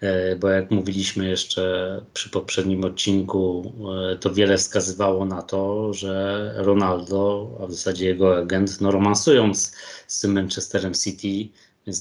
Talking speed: 130 wpm